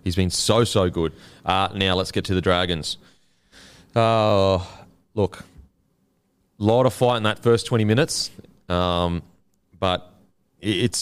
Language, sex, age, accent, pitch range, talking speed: English, male, 30-49, Australian, 90-115 Hz, 140 wpm